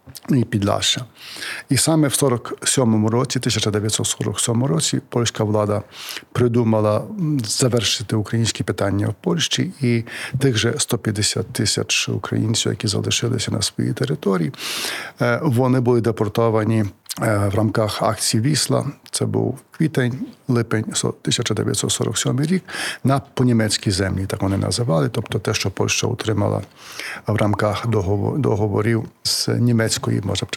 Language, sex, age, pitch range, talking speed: Ukrainian, male, 50-69, 105-125 Hz, 110 wpm